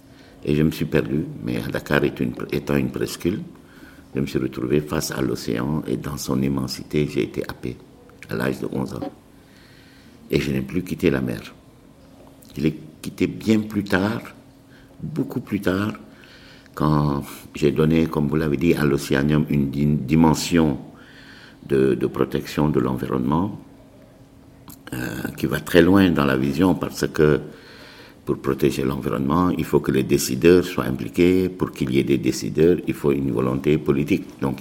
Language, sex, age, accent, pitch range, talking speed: French, male, 60-79, French, 70-80 Hz, 165 wpm